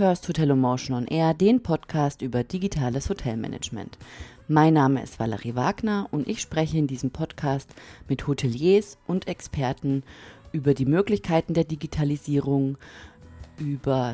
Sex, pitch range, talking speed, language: female, 135-180 Hz, 130 wpm, German